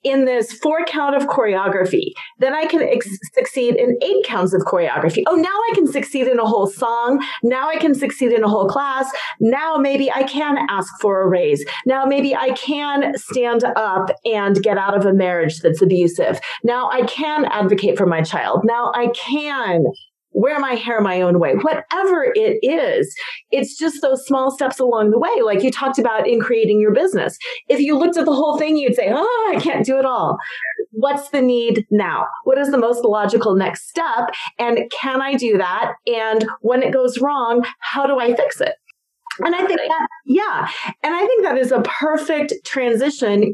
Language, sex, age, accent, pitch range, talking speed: English, female, 40-59, American, 225-305 Hz, 195 wpm